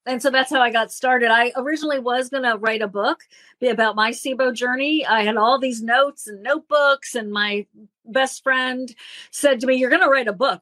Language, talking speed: English, 225 wpm